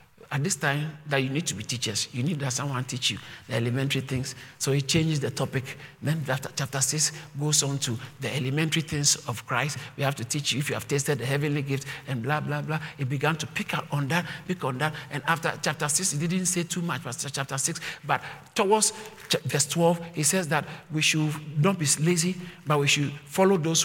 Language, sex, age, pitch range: English, male, 50-69, 150-210 Hz